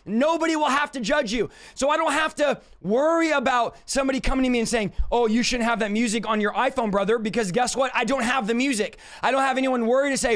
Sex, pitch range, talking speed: male, 235-285 Hz, 255 wpm